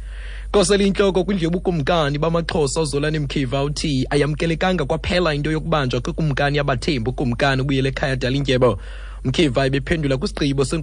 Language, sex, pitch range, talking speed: English, male, 115-155 Hz, 150 wpm